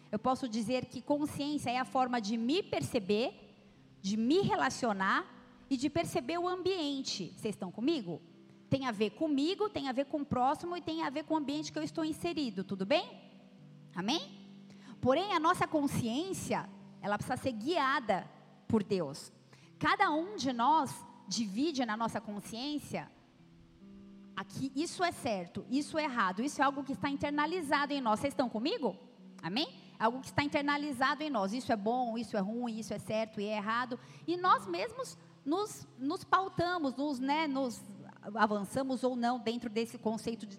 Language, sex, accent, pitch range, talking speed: Portuguese, female, Brazilian, 210-295 Hz, 170 wpm